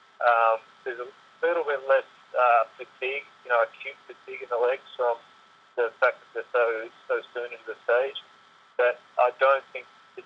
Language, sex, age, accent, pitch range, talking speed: English, male, 30-49, Australian, 115-175 Hz, 180 wpm